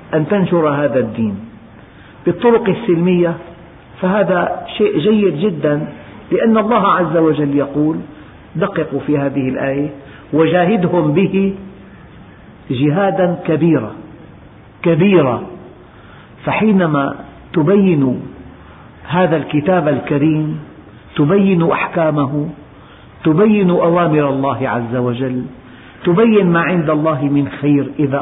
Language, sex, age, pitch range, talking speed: Arabic, male, 50-69, 140-180 Hz, 90 wpm